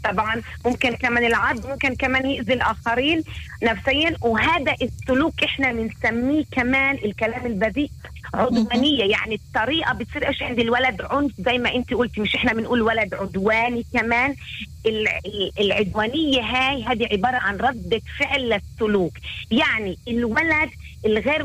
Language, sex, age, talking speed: Hebrew, female, 30-49, 125 wpm